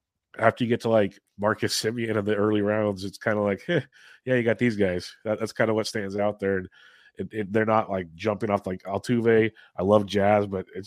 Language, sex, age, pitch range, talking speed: English, male, 30-49, 95-115 Hz, 245 wpm